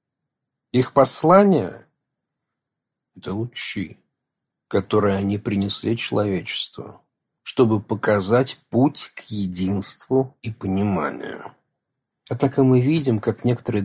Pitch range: 105-135 Hz